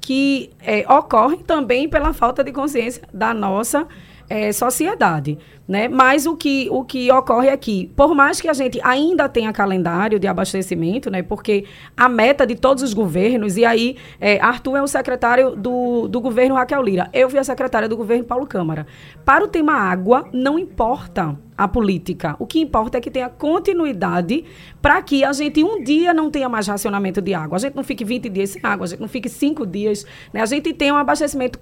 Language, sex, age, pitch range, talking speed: Portuguese, female, 20-39, 210-280 Hz, 200 wpm